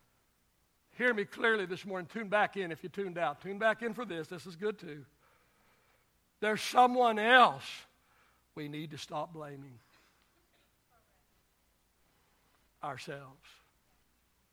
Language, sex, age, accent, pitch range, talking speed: English, male, 60-79, American, 240-290 Hz, 125 wpm